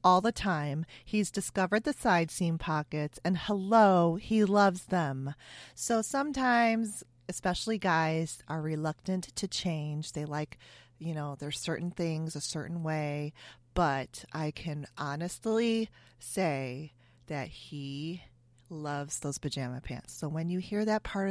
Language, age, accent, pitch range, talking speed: English, 30-49, American, 145-185 Hz, 140 wpm